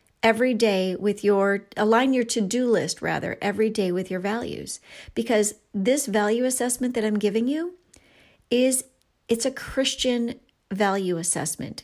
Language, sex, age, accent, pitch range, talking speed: English, female, 40-59, American, 185-230 Hz, 140 wpm